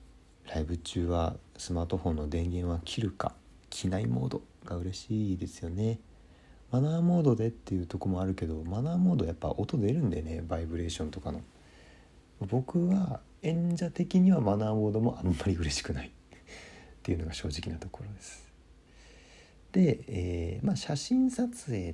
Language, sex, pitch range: Japanese, male, 80-110 Hz